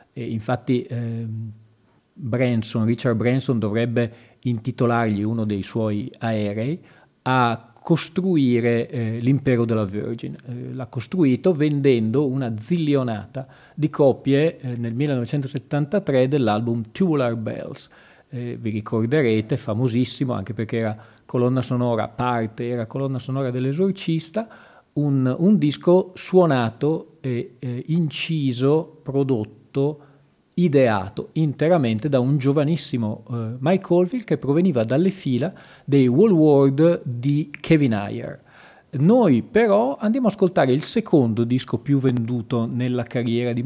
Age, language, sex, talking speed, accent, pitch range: 40-59, Italian, male, 115 wpm, native, 115-150 Hz